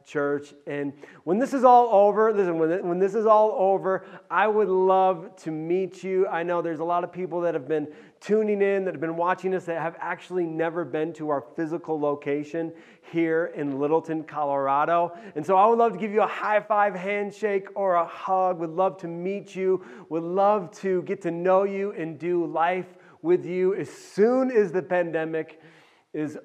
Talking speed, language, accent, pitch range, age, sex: 195 wpm, English, American, 145-185 Hz, 30-49, male